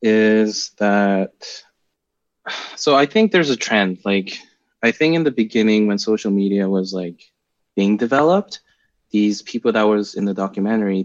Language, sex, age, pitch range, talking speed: English, male, 20-39, 95-110 Hz, 150 wpm